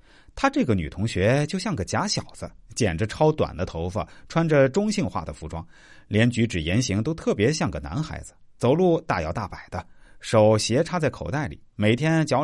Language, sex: Chinese, male